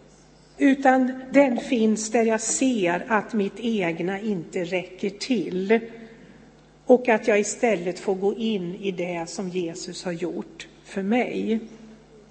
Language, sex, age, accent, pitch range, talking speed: Swedish, female, 60-79, native, 195-235 Hz, 130 wpm